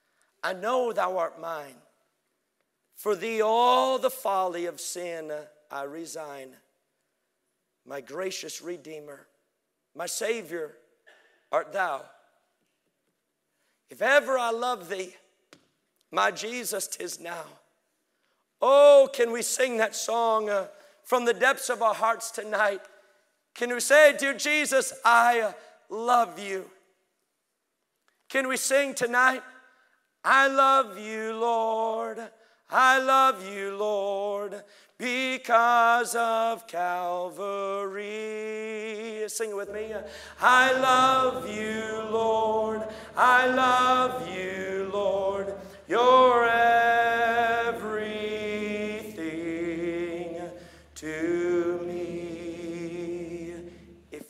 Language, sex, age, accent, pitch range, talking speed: English, male, 50-69, American, 180-240 Hz, 90 wpm